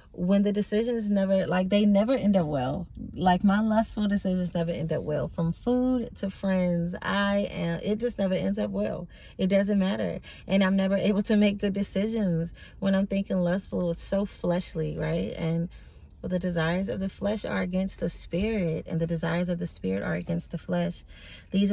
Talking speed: 195 wpm